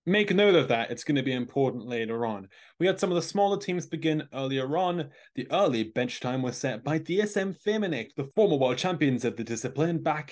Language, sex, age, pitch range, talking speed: English, male, 20-39, 115-155 Hz, 220 wpm